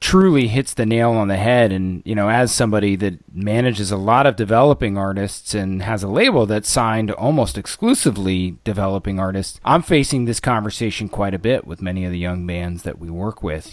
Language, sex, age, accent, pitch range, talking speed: English, male, 30-49, American, 95-120 Hz, 200 wpm